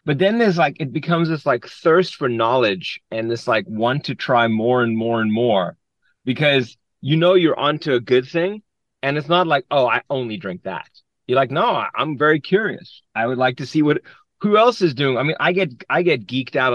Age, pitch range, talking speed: 30-49, 130-175 Hz, 225 wpm